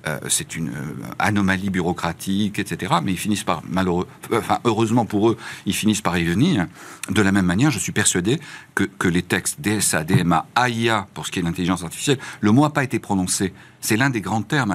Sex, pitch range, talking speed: male, 95-125 Hz, 215 wpm